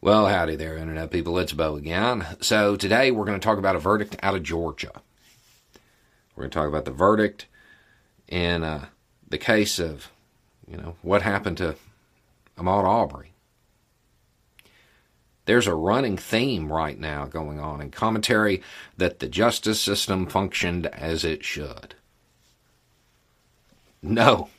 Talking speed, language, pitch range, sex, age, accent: 140 wpm, English, 80-110 Hz, male, 50-69, American